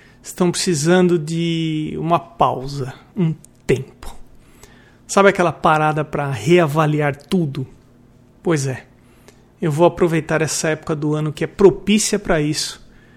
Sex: male